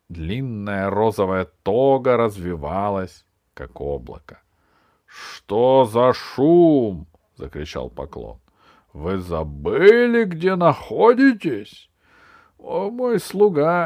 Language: Russian